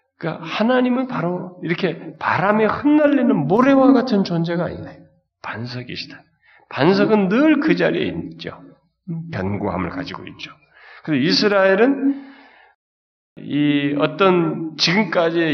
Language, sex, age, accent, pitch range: Korean, male, 40-59, native, 130-190 Hz